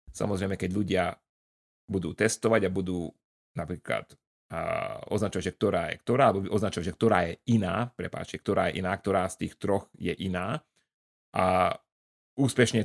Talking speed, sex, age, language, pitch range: 150 wpm, male, 30-49, Slovak, 90-110 Hz